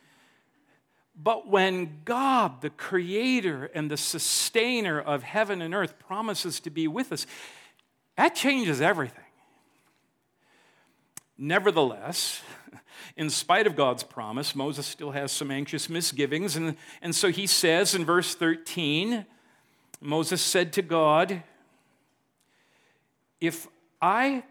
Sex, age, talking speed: male, 50-69, 110 wpm